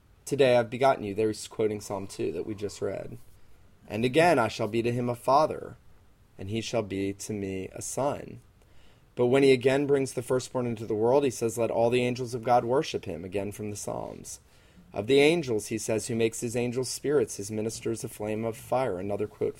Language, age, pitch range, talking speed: English, 30-49, 105-125 Hz, 215 wpm